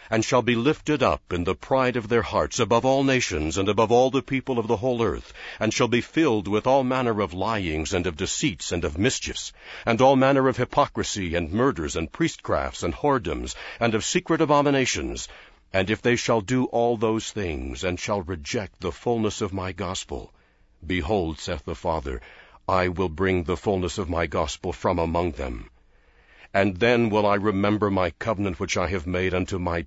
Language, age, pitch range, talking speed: English, 60-79, 90-115 Hz, 195 wpm